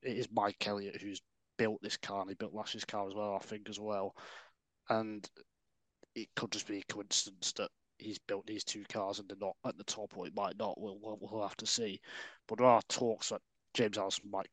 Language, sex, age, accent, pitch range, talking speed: English, male, 20-39, British, 100-110 Hz, 225 wpm